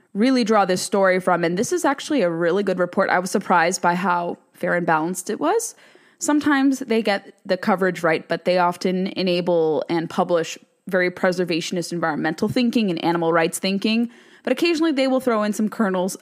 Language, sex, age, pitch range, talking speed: English, female, 20-39, 175-225 Hz, 190 wpm